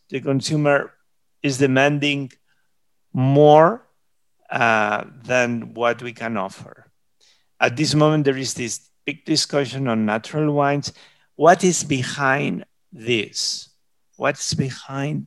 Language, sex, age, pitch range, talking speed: English, male, 50-69, 120-150 Hz, 110 wpm